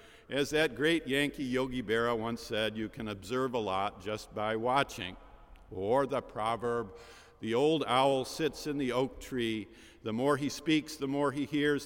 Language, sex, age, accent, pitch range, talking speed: English, male, 50-69, American, 115-155 Hz, 175 wpm